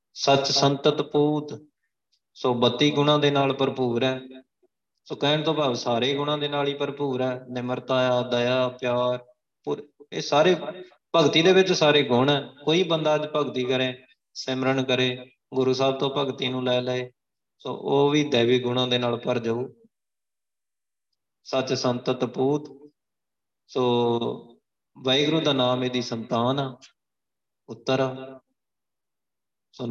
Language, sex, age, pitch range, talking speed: Punjabi, male, 20-39, 125-140 Hz, 130 wpm